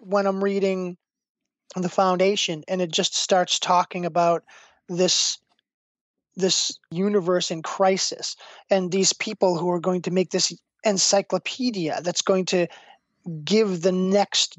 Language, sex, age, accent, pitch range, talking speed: English, male, 20-39, American, 180-205 Hz, 130 wpm